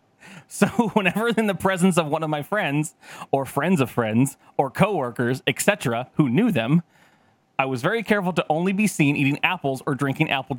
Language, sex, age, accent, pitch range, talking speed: English, male, 30-49, American, 150-215 Hz, 185 wpm